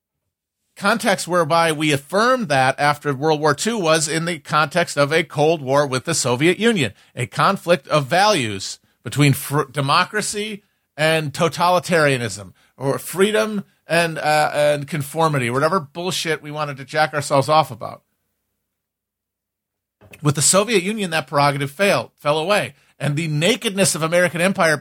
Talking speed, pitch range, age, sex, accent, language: 145 wpm, 140-185 Hz, 40-59, male, American, English